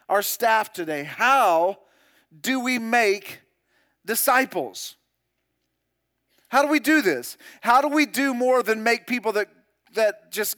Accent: American